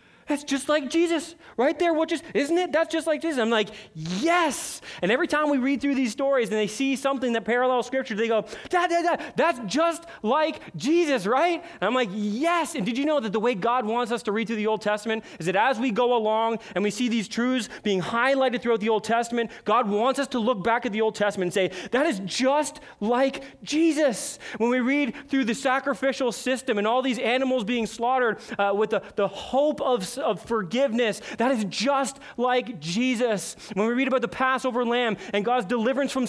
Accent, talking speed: American, 220 wpm